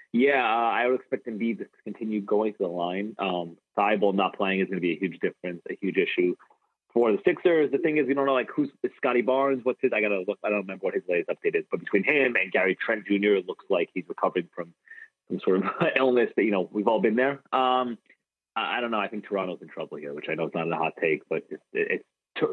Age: 30-49